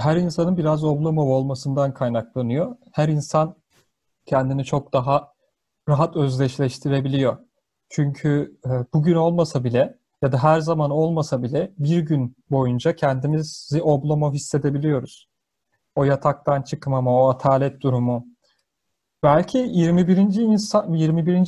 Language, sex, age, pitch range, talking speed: Turkish, male, 40-59, 135-170 Hz, 110 wpm